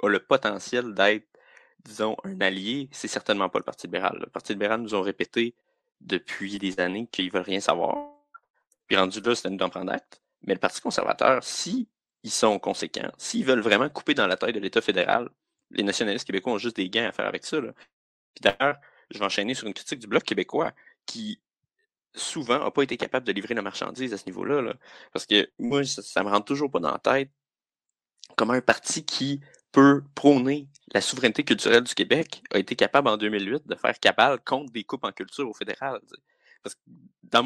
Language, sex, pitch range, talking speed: French, male, 110-175 Hz, 210 wpm